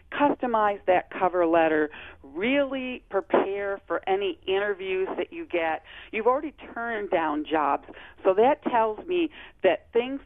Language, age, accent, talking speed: English, 40-59, American, 135 wpm